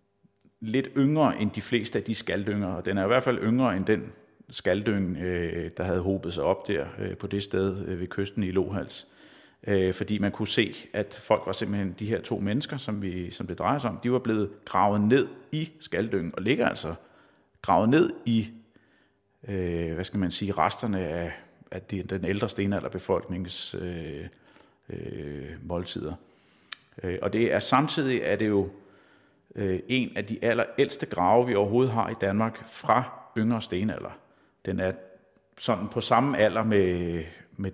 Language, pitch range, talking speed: Danish, 90-110 Hz, 170 wpm